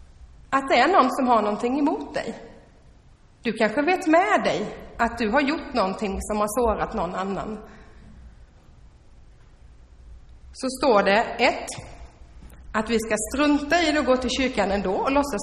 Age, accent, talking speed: 30-49, native, 160 wpm